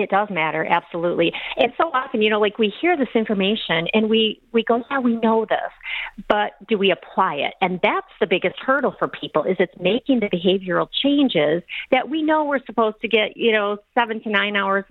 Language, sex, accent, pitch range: English, female, American, 175-220 Hz